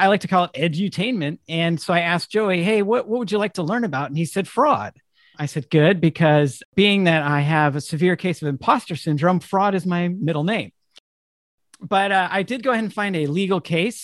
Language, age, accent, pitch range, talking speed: English, 50-69, American, 145-195 Hz, 230 wpm